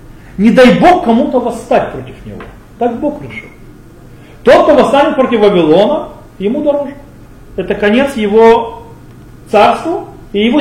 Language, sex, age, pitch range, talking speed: Russian, male, 40-59, 170-240 Hz, 130 wpm